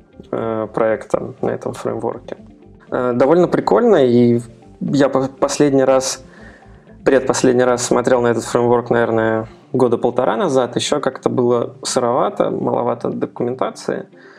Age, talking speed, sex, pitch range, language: 20-39, 110 wpm, male, 120-140 Hz, Russian